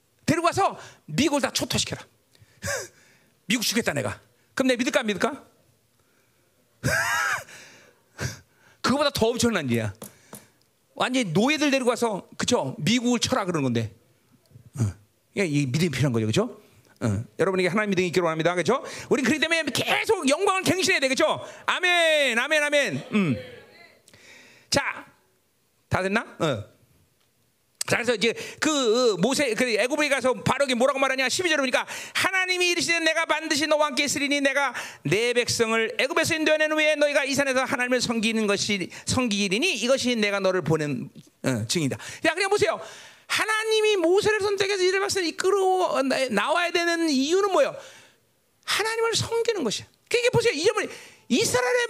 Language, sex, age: Korean, male, 40-59